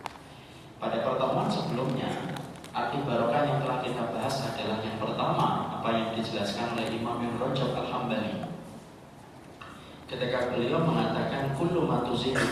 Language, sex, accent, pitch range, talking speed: Indonesian, male, native, 110-125 Hz, 110 wpm